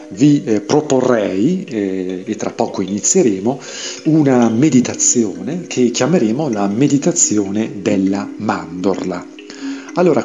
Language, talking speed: Italian, 90 wpm